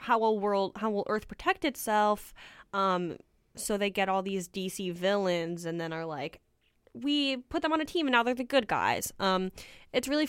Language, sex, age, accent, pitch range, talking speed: English, female, 10-29, American, 180-260 Hz, 205 wpm